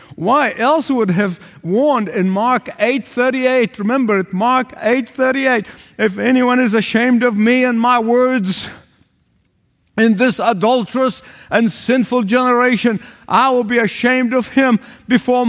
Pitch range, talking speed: 195-255 Hz, 145 wpm